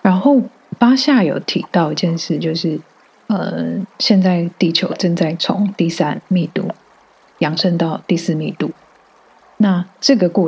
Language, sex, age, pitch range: Chinese, female, 30-49, 165-195 Hz